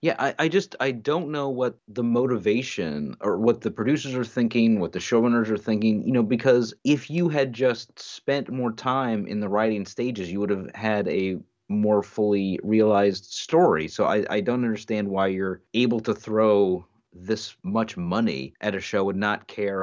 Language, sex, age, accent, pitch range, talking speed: English, male, 30-49, American, 100-125 Hz, 190 wpm